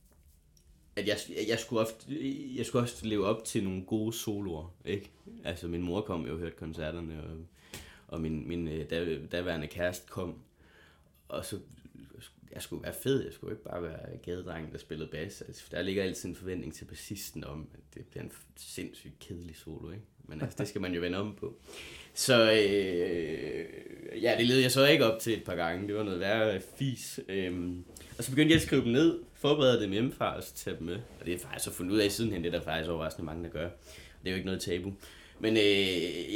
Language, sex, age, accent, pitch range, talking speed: Danish, male, 20-39, native, 85-110 Hz, 215 wpm